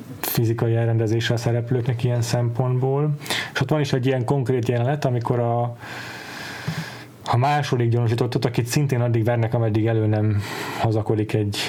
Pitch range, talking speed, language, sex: 115-140 Hz, 140 wpm, Hungarian, male